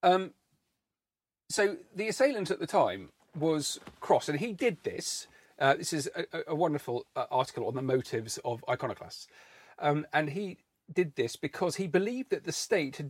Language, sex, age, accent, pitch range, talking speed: English, male, 40-59, British, 135-185 Hz, 175 wpm